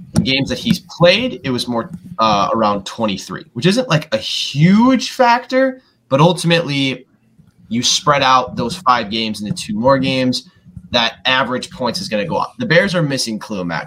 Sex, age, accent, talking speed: male, 20-39, American, 180 wpm